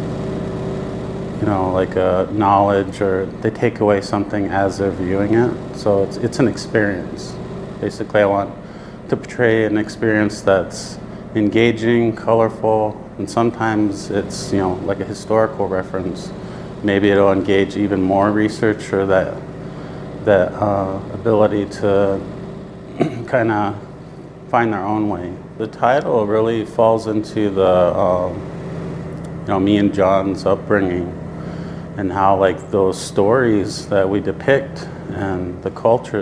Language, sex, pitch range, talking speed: English, male, 95-115 Hz, 135 wpm